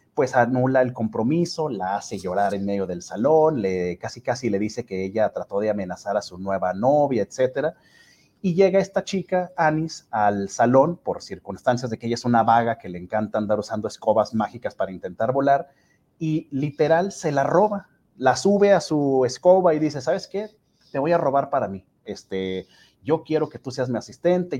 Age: 30-49